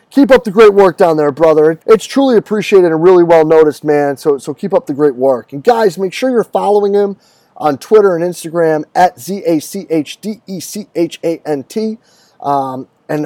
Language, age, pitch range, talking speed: English, 30-49, 135-190 Hz, 165 wpm